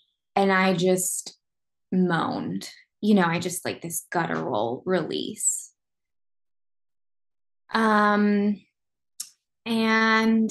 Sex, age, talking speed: female, 20-39, 80 wpm